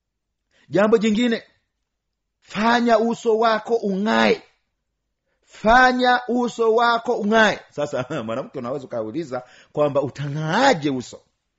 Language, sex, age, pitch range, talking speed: Swahili, male, 50-69, 155-240 Hz, 90 wpm